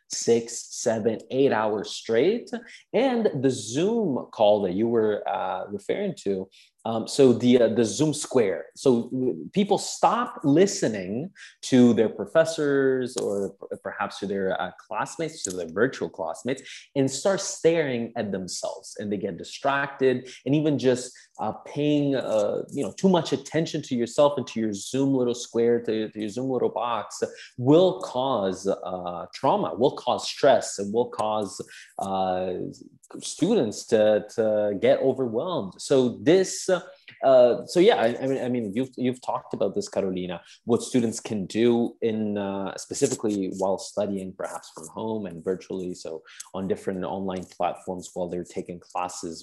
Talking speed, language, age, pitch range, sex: 160 wpm, English, 20-39, 95-135 Hz, male